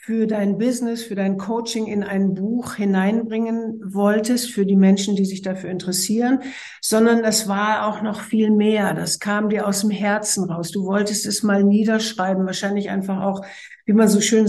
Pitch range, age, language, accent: 195-240 Hz, 60-79, German, German